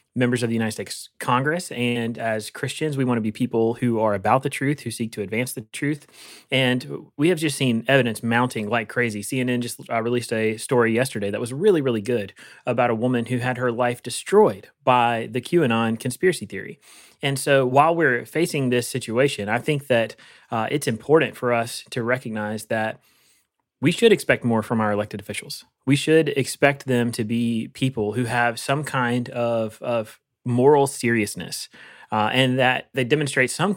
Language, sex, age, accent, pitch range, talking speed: English, male, 30-49, American, 115-140 Hz, 185 wpm